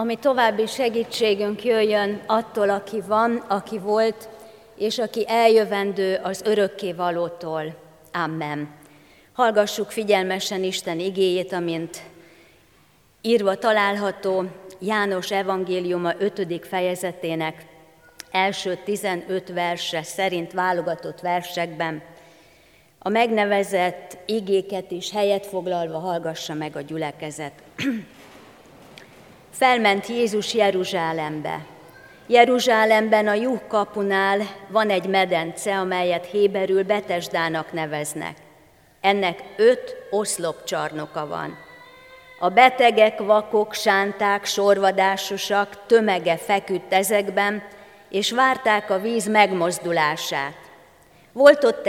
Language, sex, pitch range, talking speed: Hungarian, female, 175-215 Hz, 90 wpm